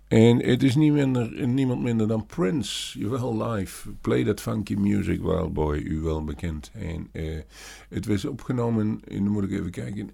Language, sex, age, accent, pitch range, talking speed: Dutch, male, 50-69, Dutch, 85-105 Hz, 190 wpm